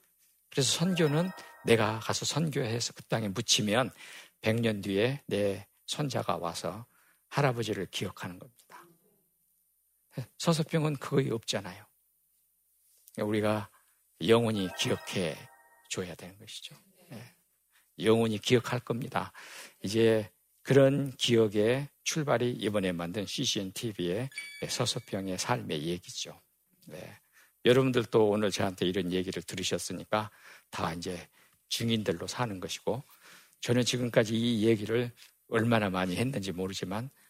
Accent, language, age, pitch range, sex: native, Korean, 50-69, 95-135 Hz, male